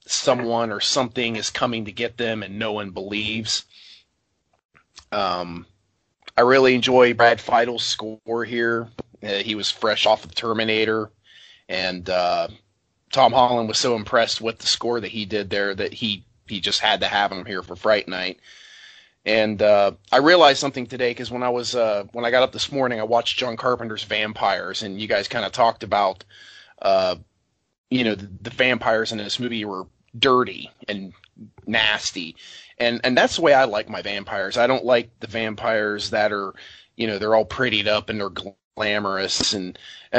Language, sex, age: English, male, 30-49